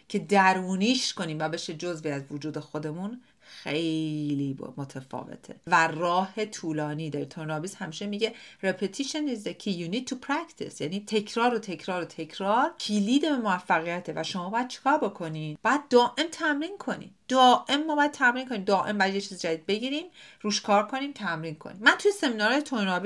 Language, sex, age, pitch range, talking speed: Persian, female, 40-59, 165-230 Hz, 165 wpm